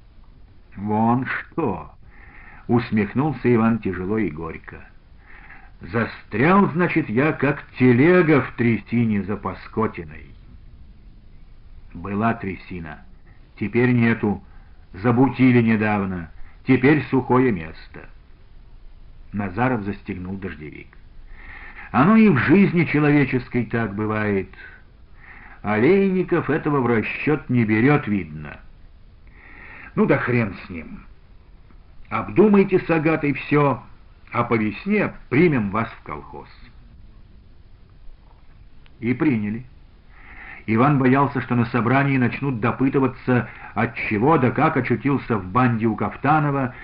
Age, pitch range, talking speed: 50-69, 100-140 Hz, 95 wpm